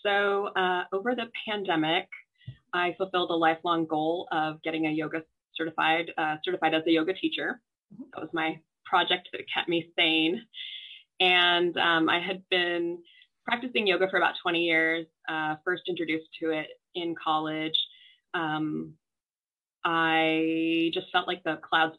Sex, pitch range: female, 160-190 Hz